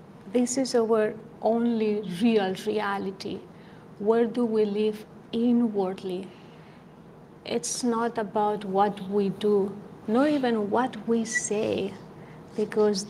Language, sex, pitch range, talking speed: English, female, 200-235 Hz, 105 wpm